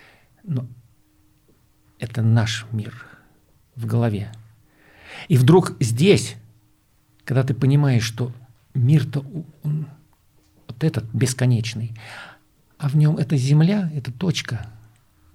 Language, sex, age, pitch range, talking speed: Russian, male, 50-69, 110-145 Hz, 100 wpm